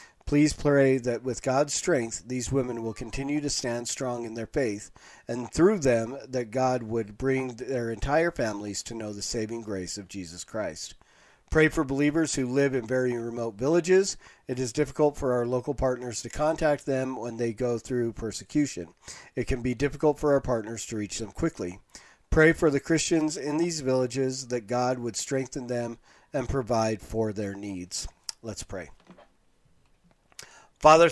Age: 40-59